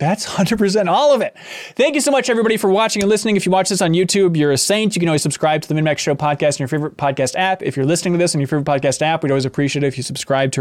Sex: male